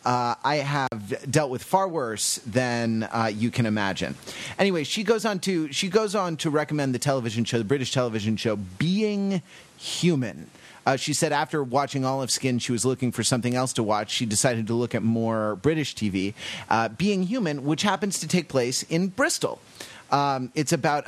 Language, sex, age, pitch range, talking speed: English, male, 30-49, 120-155 Hz, 190 wpm